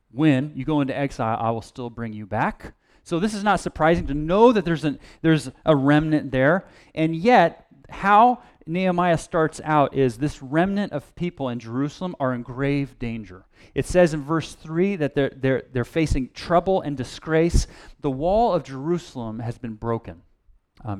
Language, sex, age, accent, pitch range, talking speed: English, male, 30-49, American, 120-160 Hz, 180 wpm